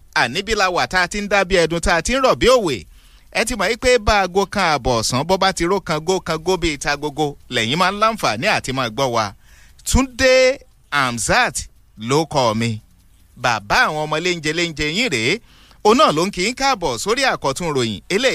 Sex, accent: male, Nigerian